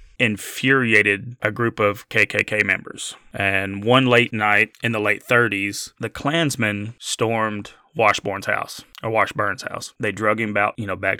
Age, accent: 20-39, American